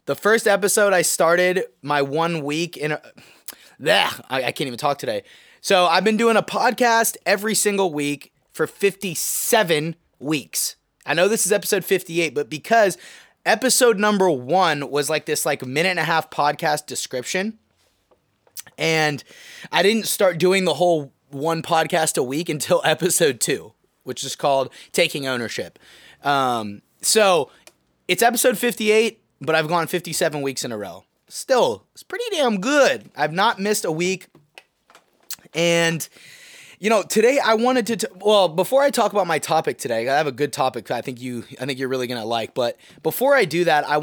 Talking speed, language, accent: 175 wpm, English, American